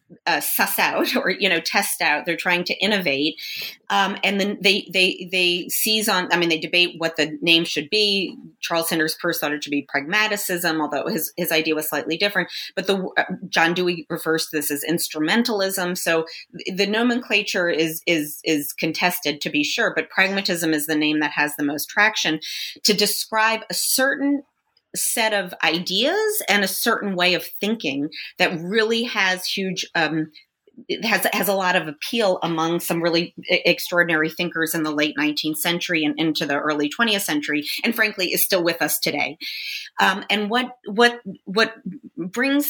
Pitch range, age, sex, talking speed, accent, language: 160-205 Hz, 30-49, female, 180 wpm, American, English